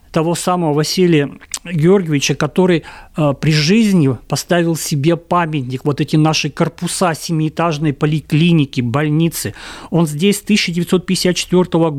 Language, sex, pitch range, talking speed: Russian, male, 150-185 Hz, 110 wpm